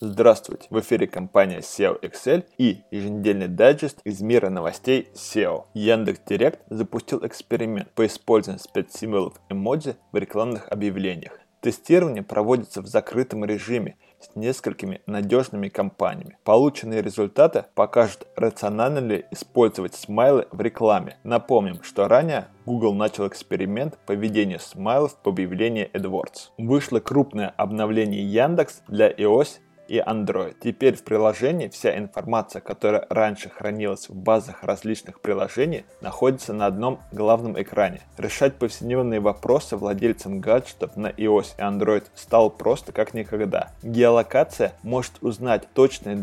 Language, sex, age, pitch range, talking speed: Russian, male, 20-39, 100-120 Hz, 125 wpm